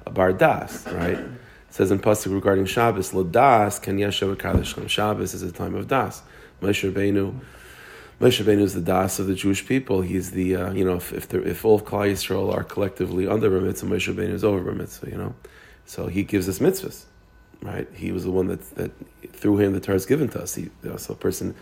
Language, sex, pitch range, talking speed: English, male, 95-105 Hz, 205 wpm